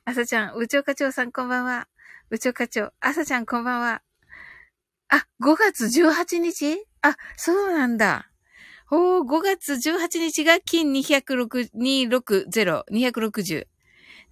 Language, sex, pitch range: Japanese, female, 200-275 Hz